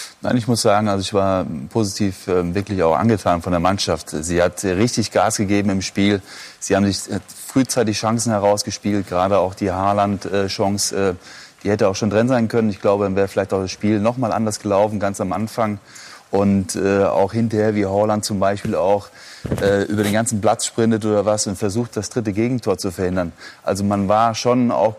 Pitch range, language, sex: 100-120 Hz, German, male